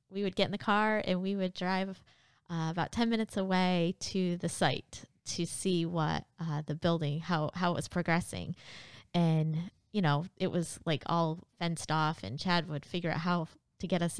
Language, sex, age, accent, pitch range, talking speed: English, female, 20-39, American, 160-195 Hz, 200 wpm